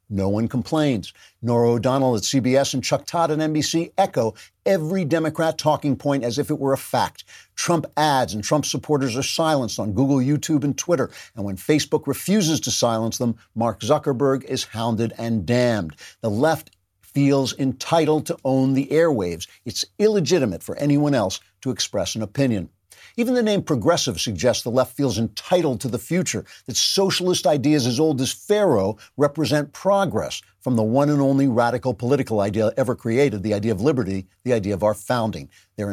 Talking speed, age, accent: 175 wpm, 50-69, American